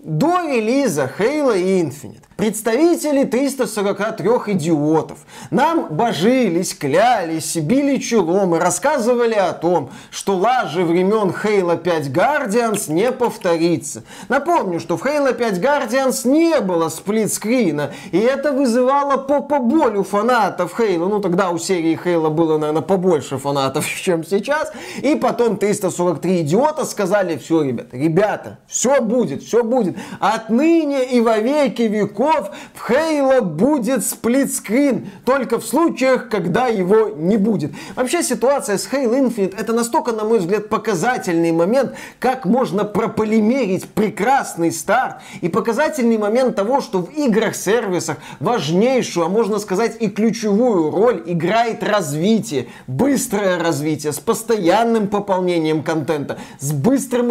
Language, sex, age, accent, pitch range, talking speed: Russian, male, 20-39, native, 180-245 Hz, 125 wpm